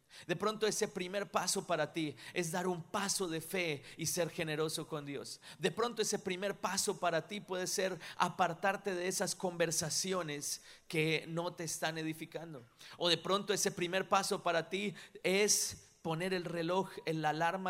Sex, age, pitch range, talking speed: male, 40-59, 150-185 Hz, 170 wpm